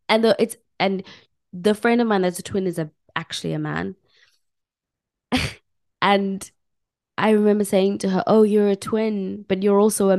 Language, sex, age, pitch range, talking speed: English, female, 20-39, 150-195 Hz, 175 wpm